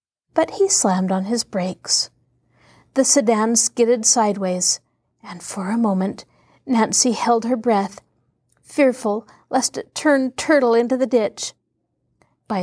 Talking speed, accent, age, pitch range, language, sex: 130 wpm, American, 40-59, 190-245 Hz, English, female